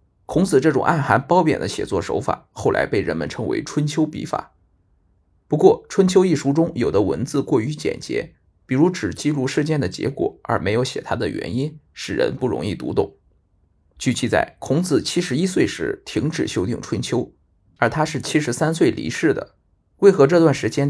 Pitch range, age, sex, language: 95-160 Hz, 20-39, male, Chinese